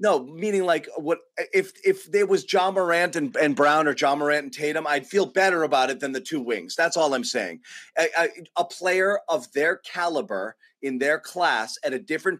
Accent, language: American, English